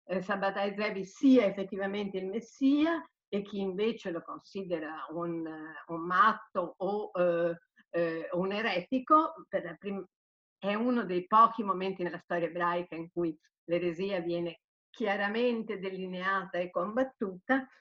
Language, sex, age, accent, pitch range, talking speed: Italian, female, 50-69, native, 180-240 Hz, 125 wpm